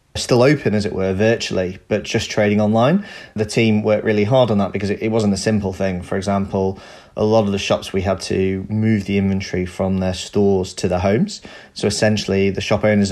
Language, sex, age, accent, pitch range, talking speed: English, male, 30-49, British, 95-110 Hz, 220 wpm